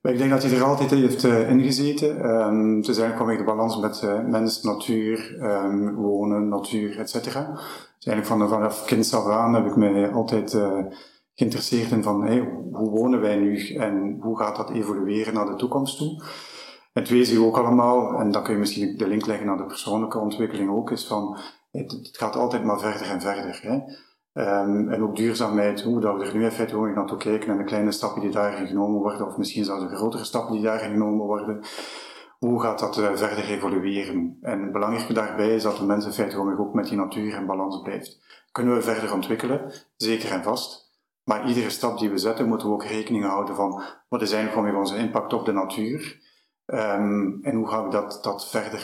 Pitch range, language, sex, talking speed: 100-115 Hz, Dutch, male, 205 wpm